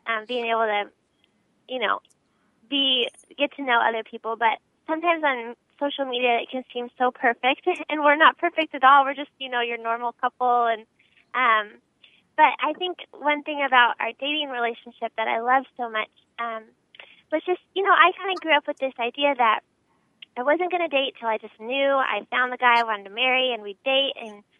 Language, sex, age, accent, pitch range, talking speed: English, female, 10-29, American, 230-280 Hz, 210 wpm